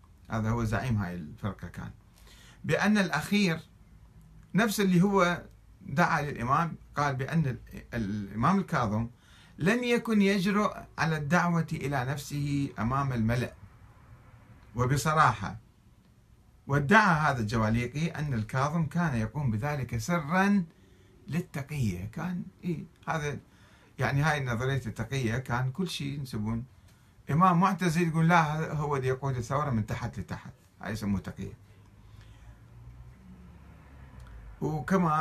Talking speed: 105 wpm